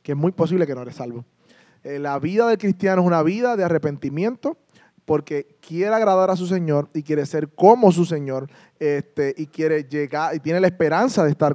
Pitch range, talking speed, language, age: 145-180 Hz, 210 wpm, Spanish, 20-39